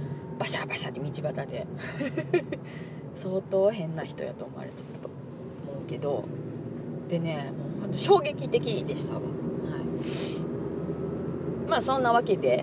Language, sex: Japanese, female